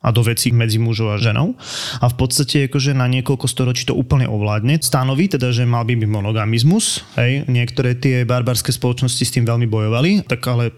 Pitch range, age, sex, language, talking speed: 115-140 Hz, 20-39, male, Slovak, 200 wpm